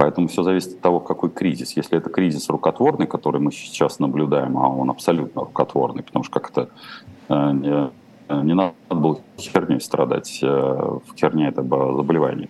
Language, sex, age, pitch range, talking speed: Russian, male, 30-49, 75-90 Hz, 155 wpm